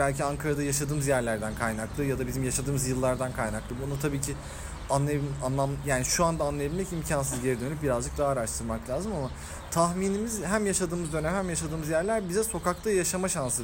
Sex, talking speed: male, 165 wpm